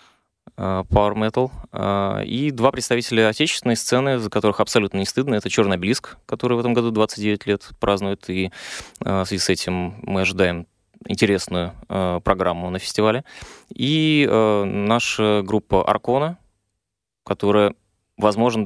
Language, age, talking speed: Russian, 20-39, 125 wpm